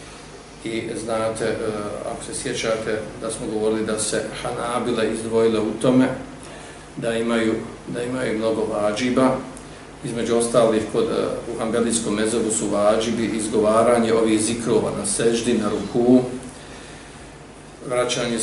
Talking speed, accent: 115 wpm, Serbian